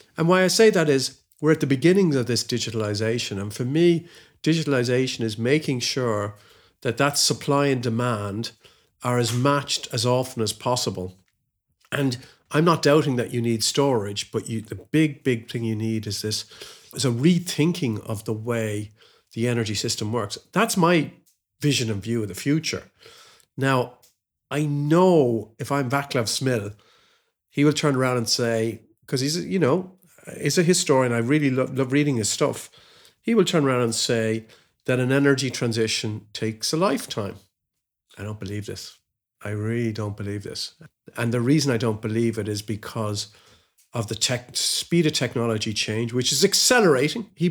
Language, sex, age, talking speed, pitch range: English, male, 50-69, 170 wpm, 115-145 Hz